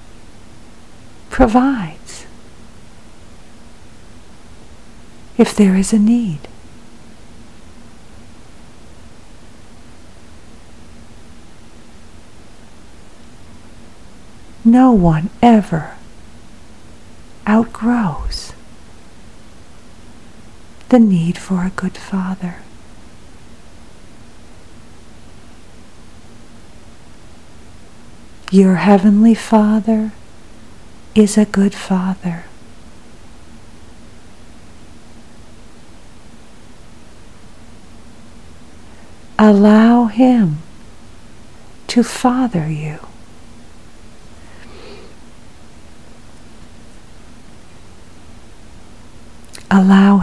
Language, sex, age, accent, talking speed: English, female, 50-69, American, 35 wpm